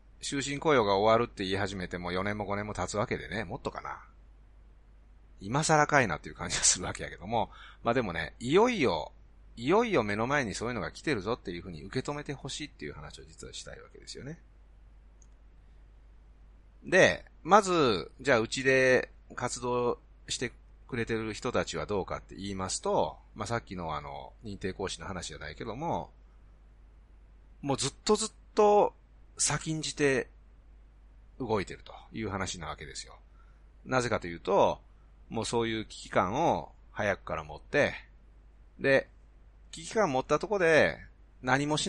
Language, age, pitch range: Japanese, 30-49, 85-130 Hz